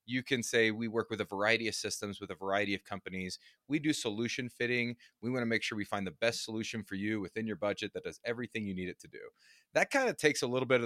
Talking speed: 275 wpm